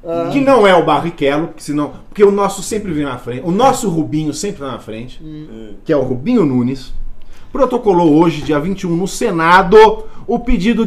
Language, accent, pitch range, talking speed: Portuguese, Brazilian, 155-215 Hz, 175 wpm